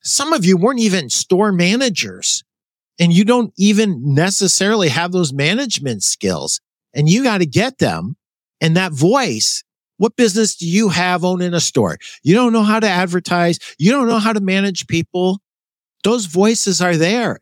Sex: male